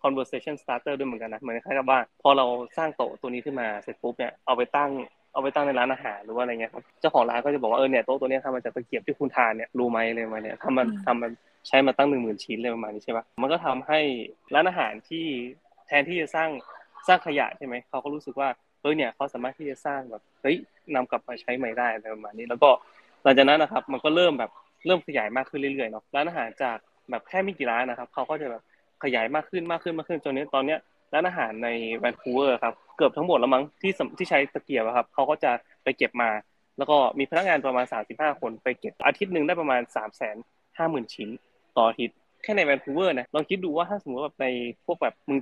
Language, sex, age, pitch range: Thai, male, 20-39, 120-150 Hz